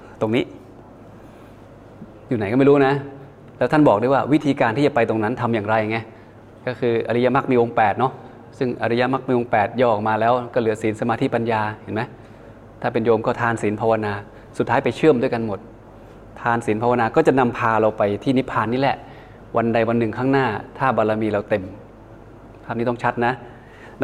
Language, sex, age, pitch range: Thai, male, 20-39, 110-130 Hz